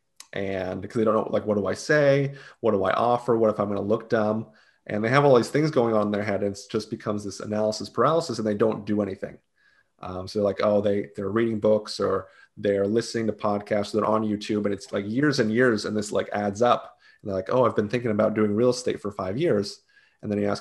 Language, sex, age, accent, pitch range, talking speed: English, male, 30-49, American, 100-120 Hz, 265 wpm